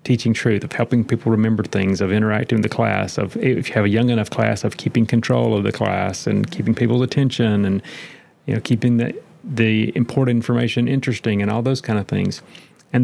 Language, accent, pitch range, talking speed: English, American, 110-135 Hz, 210 wpm